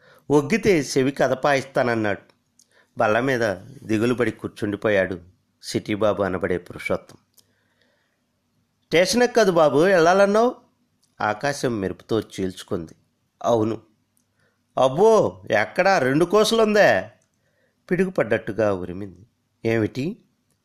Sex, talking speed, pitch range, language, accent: male, 75 wpm, 105-170 Hz, Telugu, native